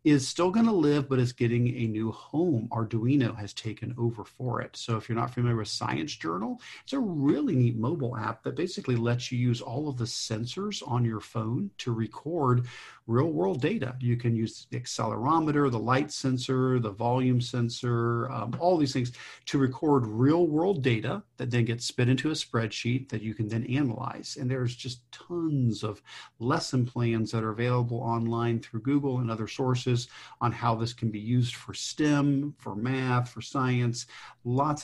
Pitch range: 115-130 Hz